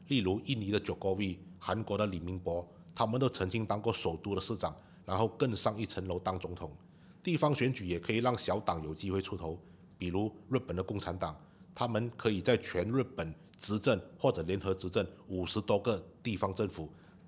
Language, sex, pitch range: Chinese, male, 90-120 Hz